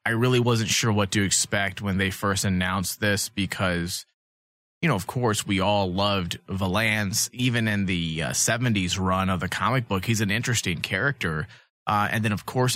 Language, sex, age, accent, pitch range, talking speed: English, male, 30-49, American, 95-120 Hz, 190 wpm